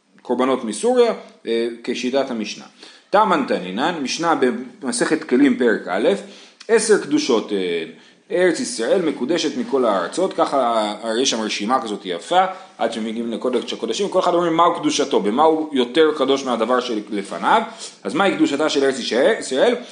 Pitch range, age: 140-215 Hz, 30-49